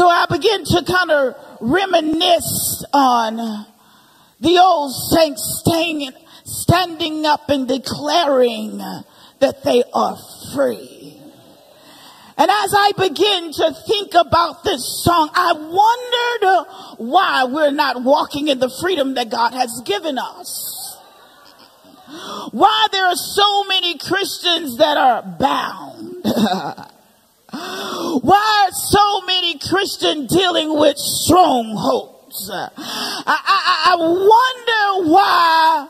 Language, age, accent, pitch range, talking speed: English, 40-59, American, 285-380 Hz, 105 wpm